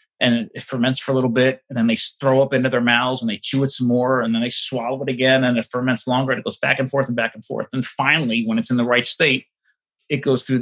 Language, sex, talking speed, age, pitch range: English, male, 295 wpm, 30-49, 125-160 Hz